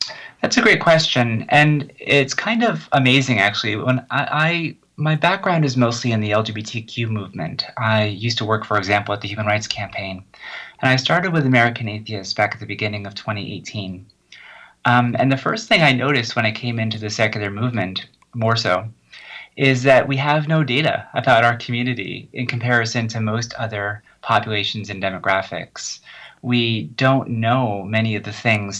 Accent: American